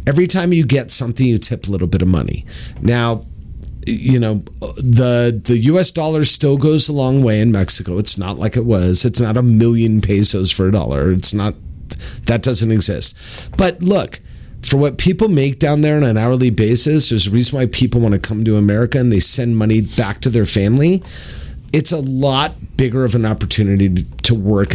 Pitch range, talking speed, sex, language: 100-150 Hz, 200 wpm, male, English